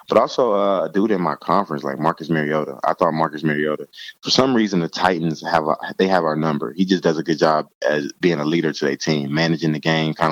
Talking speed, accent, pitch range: 250 wpm, American, 75-85 Hz